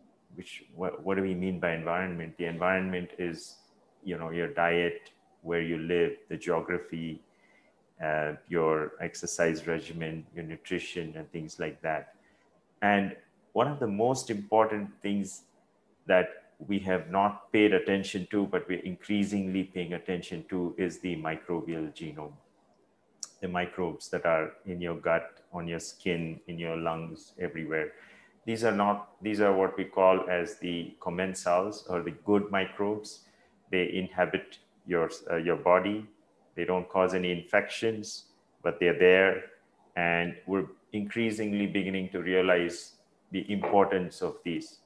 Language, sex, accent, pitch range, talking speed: English, male, Indian, 85-100 Hz, 145 wpm